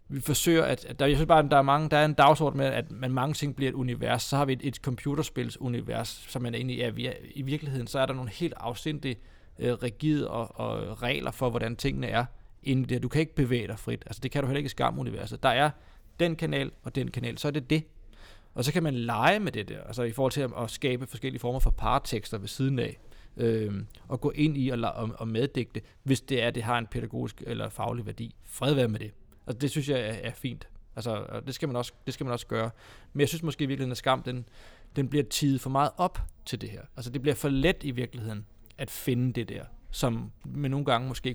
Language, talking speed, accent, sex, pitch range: Danish, 240 wpm, native, male, 115-140 Hz